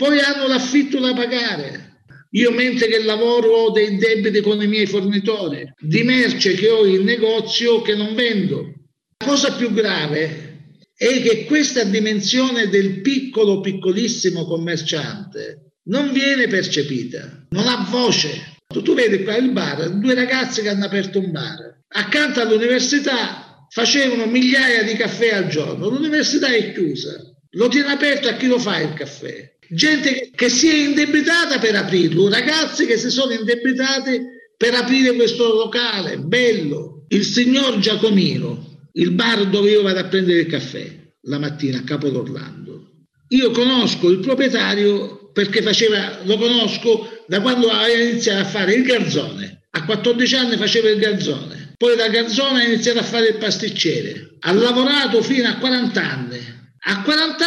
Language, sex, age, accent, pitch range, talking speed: Italian, male, 50-69, native, 185-245 Hz, 155 wpm